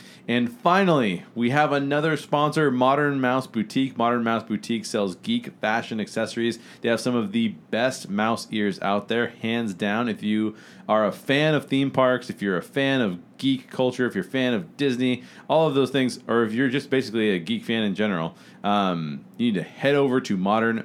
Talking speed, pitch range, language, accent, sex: 205 wpm, 110-140 Hz, English, American, male